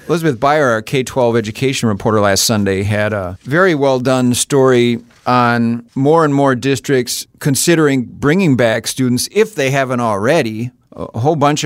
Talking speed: 150 wpm